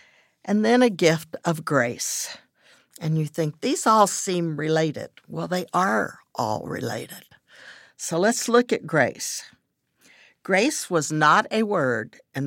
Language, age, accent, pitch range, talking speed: English, 60-79, American, 150-205 Hz, 140 wpm